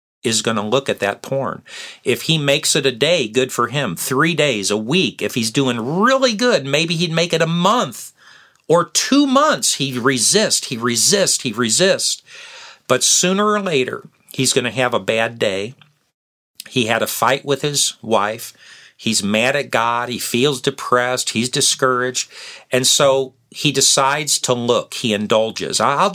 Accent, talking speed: American, 170 wpm